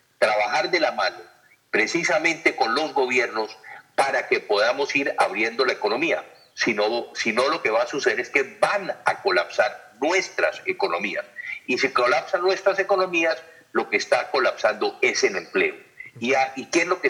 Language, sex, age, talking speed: Spanish, male, 50-69, 175 wpm